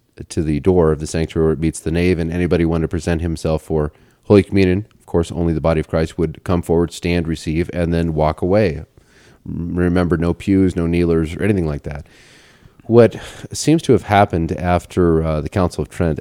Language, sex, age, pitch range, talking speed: English, male, 30-49, 80-100 Hz, 205 wpm